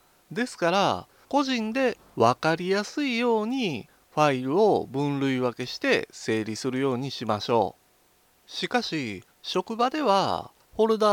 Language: Japanese